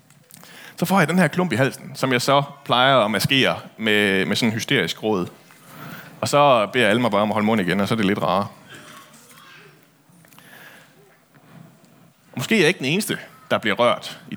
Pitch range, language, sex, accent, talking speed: 115-160 Hz, Danish, male, native, 205 wpm